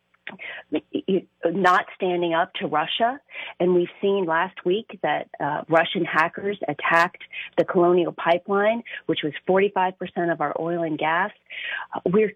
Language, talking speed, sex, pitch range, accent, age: English, 140 wpm, female, 165-200 Hz, American, 40-59